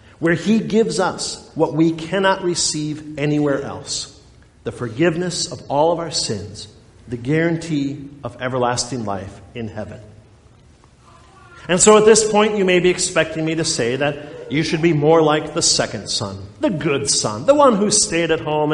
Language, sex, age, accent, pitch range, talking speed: English, male, 50-69, American, 135-210 Hz, 175 wpm